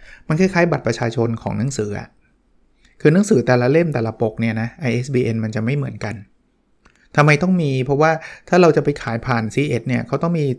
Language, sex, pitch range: Thai, male, 120-155 Hz